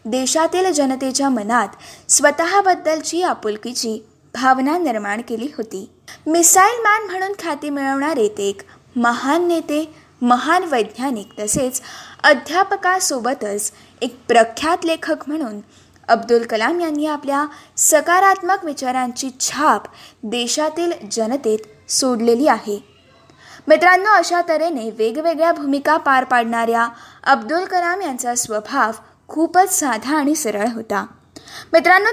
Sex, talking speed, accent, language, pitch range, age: female, 105 wpm, native, Marathi, 235-330 Hz, 20-39